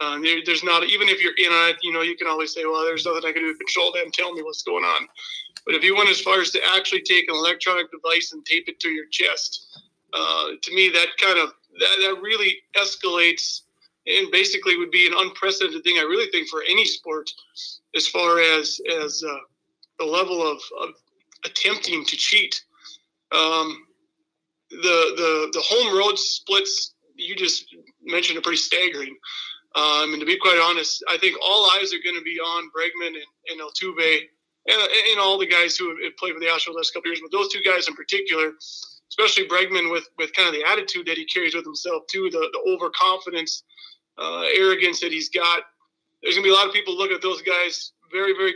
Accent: American